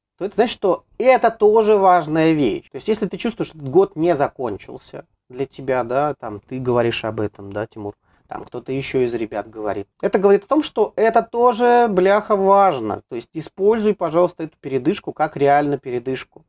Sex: male